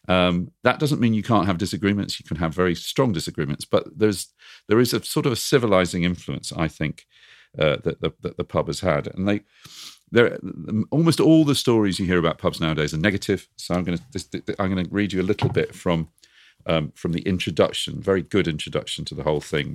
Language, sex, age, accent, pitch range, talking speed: English, male, 50-69, British, 85-110 Hz, 220 wpm